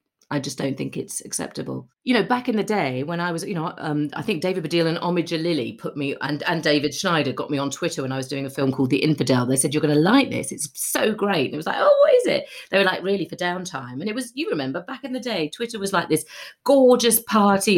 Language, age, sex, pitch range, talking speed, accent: English, 40-59, female, 150-220 Hz, 275 wpm, British